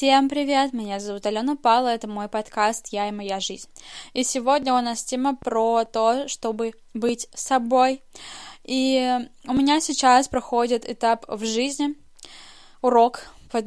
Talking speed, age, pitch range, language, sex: 145 wpm, 10-29, 220-250 Hz, Russian, female